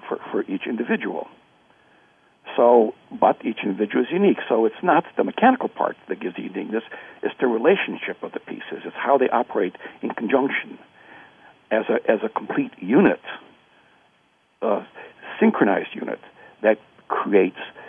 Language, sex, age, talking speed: English, male, 60-79, 140 wpm